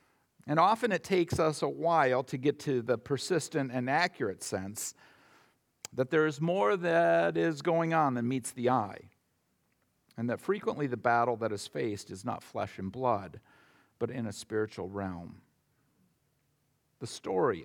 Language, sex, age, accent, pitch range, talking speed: English, male, 50-69, American, 120-190 Hz, 160 wpm